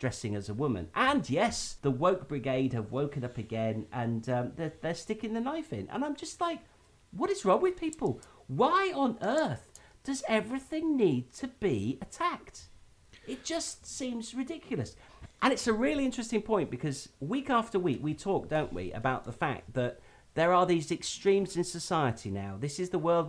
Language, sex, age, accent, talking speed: English, male, 40-59, British, 185 wpm